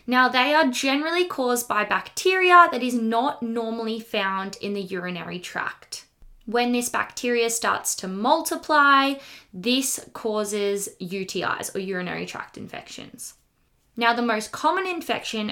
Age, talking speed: 10-29, 130 wpm